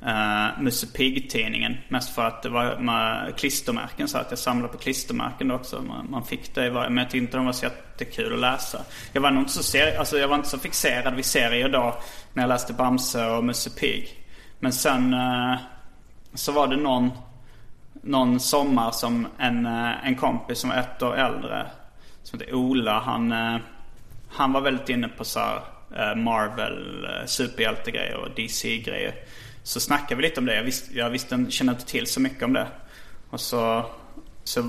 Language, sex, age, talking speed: English, male, 30-49, 185 wpm